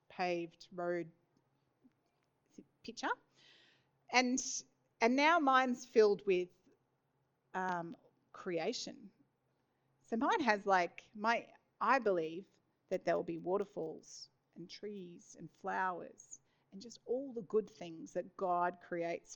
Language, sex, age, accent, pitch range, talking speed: English, female, 40-59, Australian, 170-215 Hz, 110 wpm